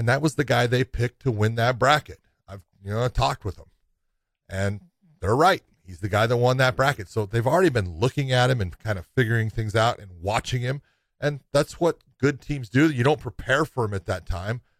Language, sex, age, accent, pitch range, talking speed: English, male, 40-59, American, 105-130 Hz, 235 wpm